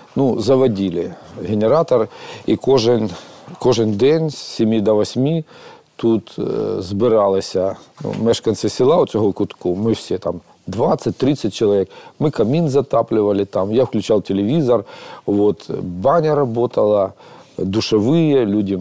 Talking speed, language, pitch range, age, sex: 115 wpm, Ukrainian, 105-135 Hz, 40-59, male